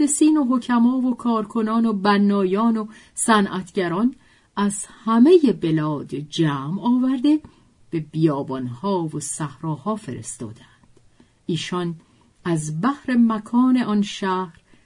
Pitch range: 160-245 Hz